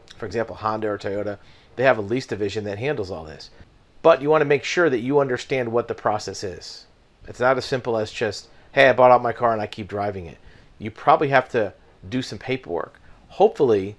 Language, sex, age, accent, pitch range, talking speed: English, male, 40-59, American, 110-130 Hz, 225 wpm